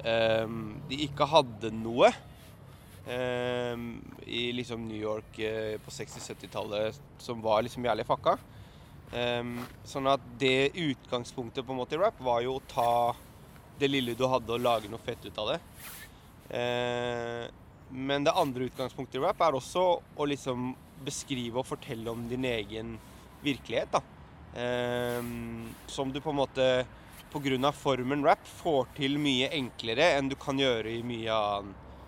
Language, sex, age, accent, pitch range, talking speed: English, male, 20-39, Swedish, 115-135 Hz, 155 wpm